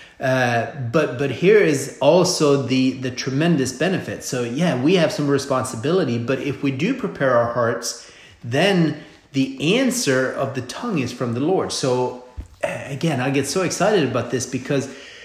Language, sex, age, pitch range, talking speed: English, male, 30-49, 125-155 Hz, 165 wpm